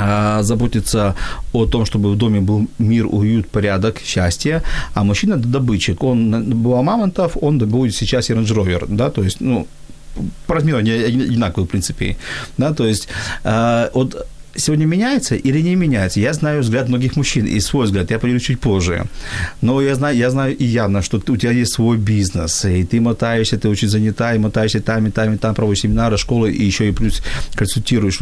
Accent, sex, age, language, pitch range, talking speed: native, male, 40-59, Ukrainian, 105-130 Hz, 175 wpm